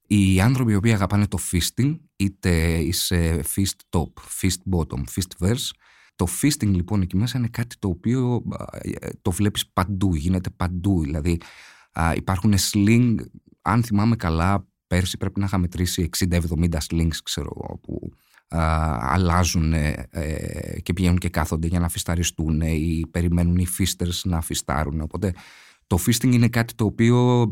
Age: 30-49